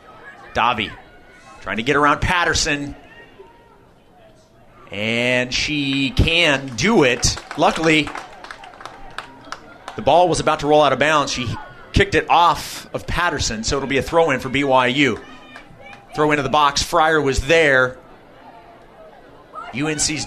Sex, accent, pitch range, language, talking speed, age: male, American, 135-180 Hz, English, 125 wpm, 30-49